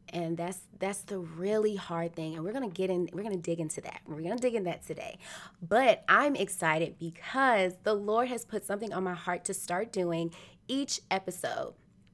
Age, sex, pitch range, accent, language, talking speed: 20-39, female, 175-210 Hz, American, English, 215 wpm